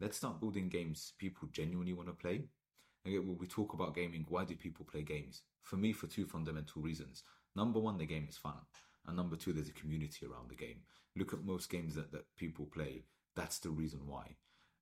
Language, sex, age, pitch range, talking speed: English, male, 30-49, 75-90 Hz, 210 wpm